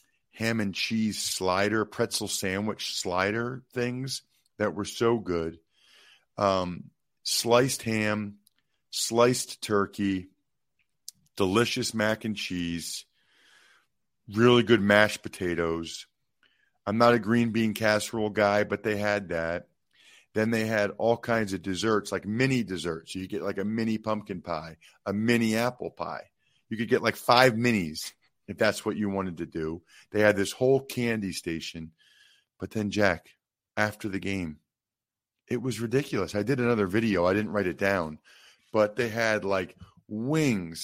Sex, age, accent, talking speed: male, 50-69, American, 145 wpm